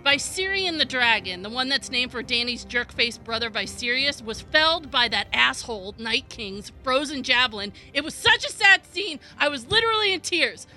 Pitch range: 230-290 Hz